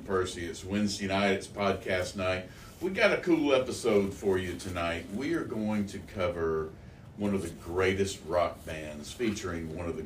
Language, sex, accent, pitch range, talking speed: English, male, American, 75-95 Hz, 180 wpm